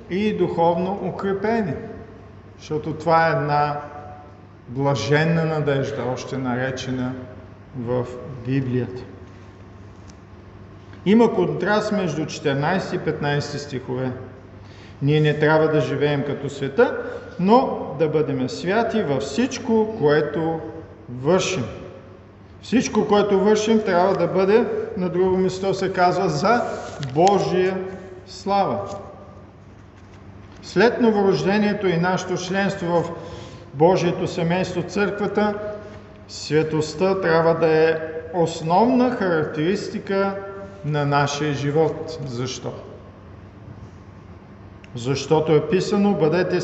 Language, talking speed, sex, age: Bulgarian, 95 wpm, male, 40-59